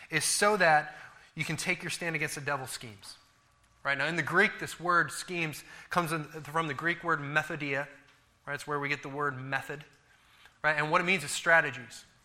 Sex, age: male, 20-39